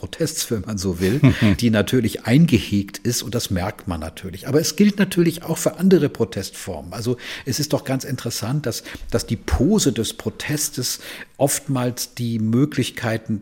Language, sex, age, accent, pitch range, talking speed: German, male, 50-69, German, 100-125 Hz, 165 wpm